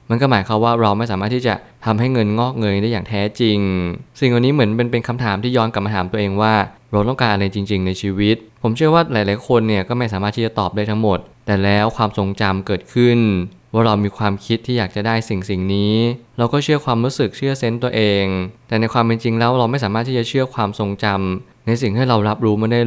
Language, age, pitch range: Thai, 20-39, 100-120 Hz